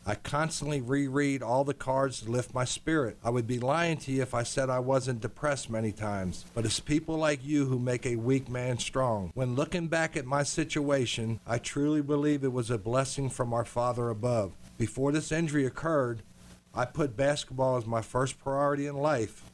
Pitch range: 120-150 Hz